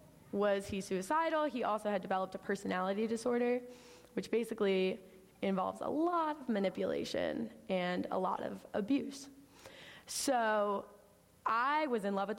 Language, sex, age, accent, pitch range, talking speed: English, female, 20-39, American, 195-240 Hz, 135 wpm